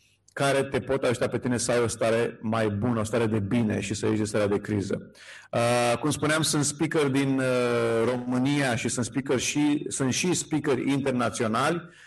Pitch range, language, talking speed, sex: 115-140 Hz, Romanian, 195 wpm, male